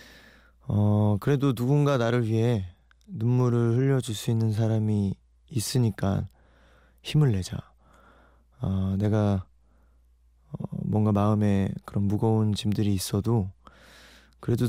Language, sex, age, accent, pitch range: Korean, male, 20-39, native, 100-125 Hz